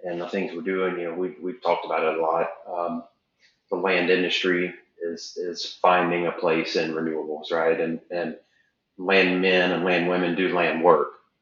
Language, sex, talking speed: English, male, 195 wpm